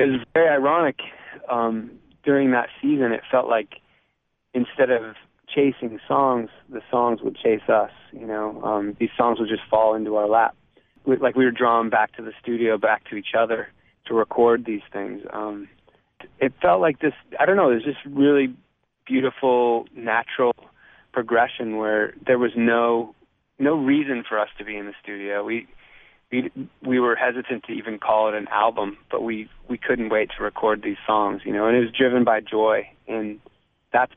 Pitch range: 110-130 Hz